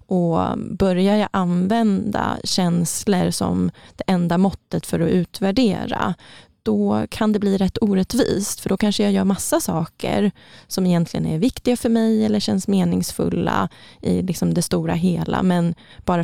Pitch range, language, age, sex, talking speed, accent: 180-220 Hz, English, 20-39, female, 150 wpm, Swedish